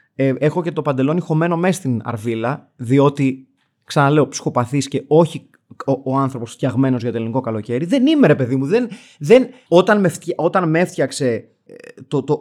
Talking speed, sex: 165 wpm, male